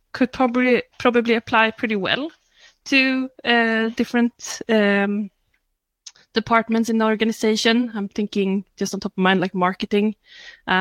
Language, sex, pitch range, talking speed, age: English, female, 195-235 Hz, 135 wpm, 20-39